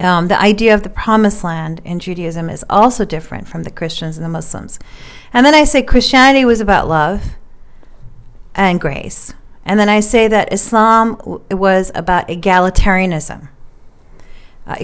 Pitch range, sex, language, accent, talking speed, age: 170-215 Hz, female, English, American, 160 wpm, 40-59